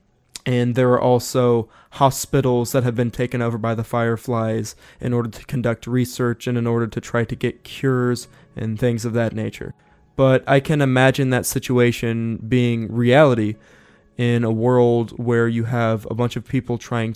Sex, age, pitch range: male, 20-39, 115-125 Hz